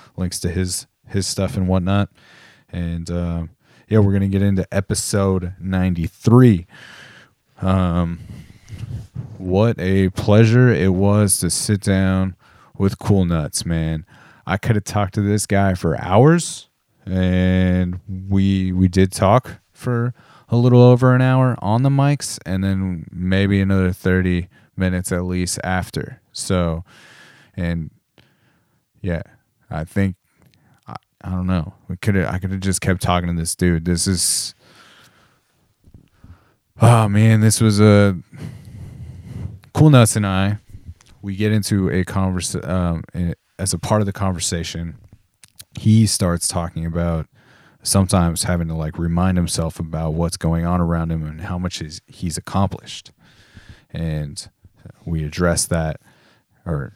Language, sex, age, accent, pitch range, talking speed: English, male, 30-49, American, 85-105 Hz, 140 wpm